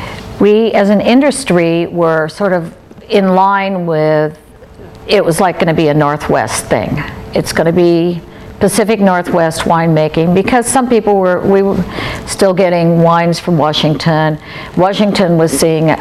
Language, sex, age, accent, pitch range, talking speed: English, female, 60-79, American, 155-195 Hz, 140 wpm